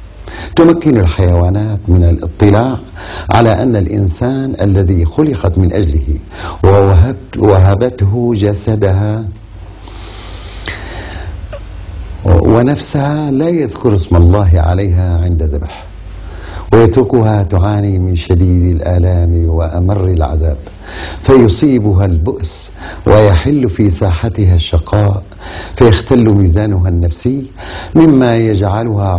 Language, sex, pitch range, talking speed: Arabic, male, 85-110 Hz, 80 wpm